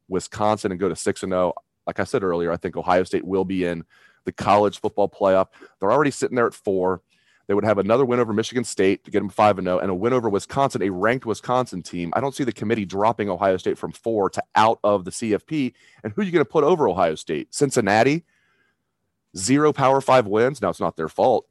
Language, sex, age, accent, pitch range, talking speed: English, male, 30-49, American, 90-125 Hz, 240 wpm